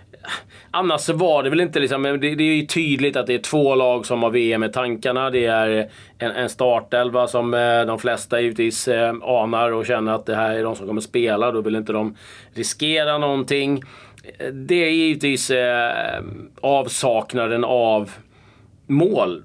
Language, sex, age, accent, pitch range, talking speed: Swedish, male, 30-49, native, 115-135 Hz, 155 wpm